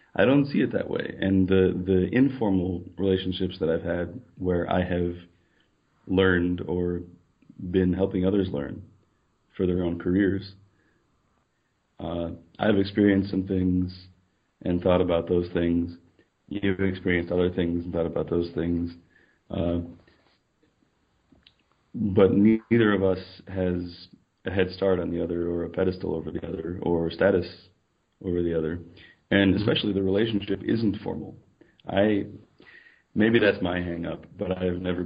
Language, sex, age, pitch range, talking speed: English, male, 30-49, 85-95 Hz, 140 wpm